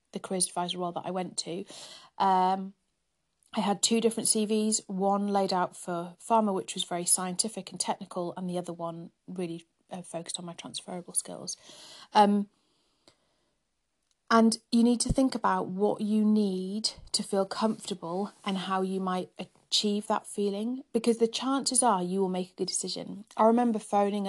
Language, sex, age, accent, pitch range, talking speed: English, female, 30-49, British, 185-220 Hz, 170 wpm